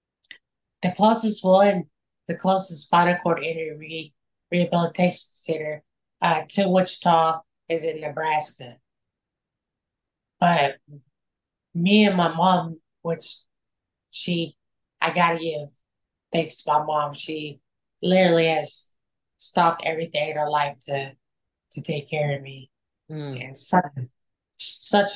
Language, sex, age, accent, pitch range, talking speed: English, female, 20-39, American, 150-175 Hz, 110 wpm